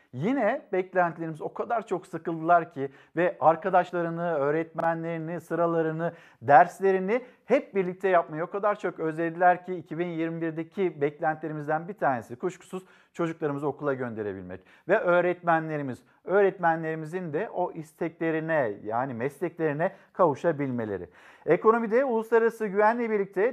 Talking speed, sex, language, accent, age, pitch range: 105 wpm, male, Turkish, native, 50-69, 160-200 Hz